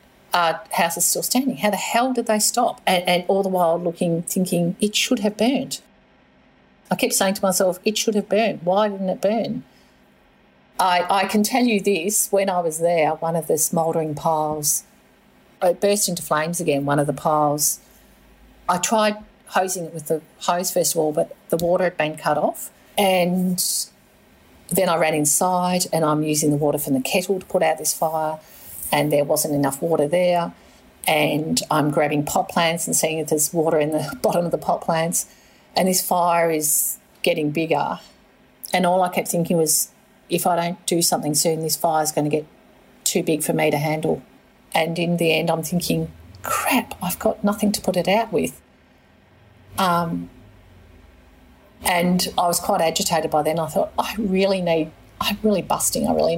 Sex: female